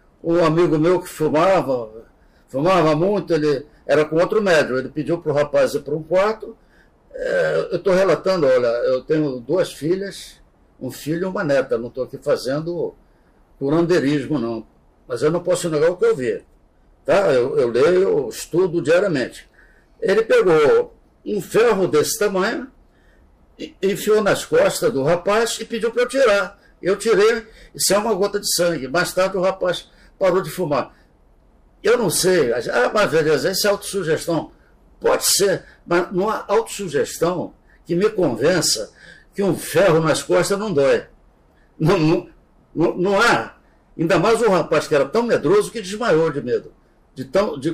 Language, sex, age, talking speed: Portuguese, male, 60-79, 165 wpm